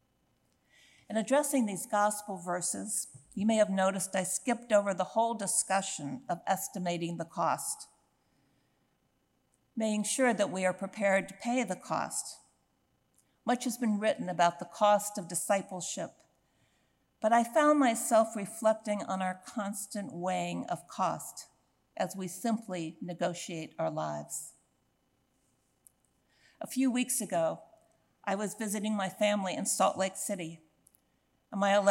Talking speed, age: 130 wpm, 60-79